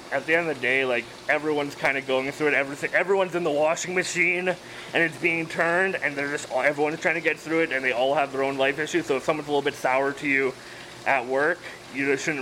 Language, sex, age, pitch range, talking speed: English, male, 20-39, 130-160 Hz, 260 wpm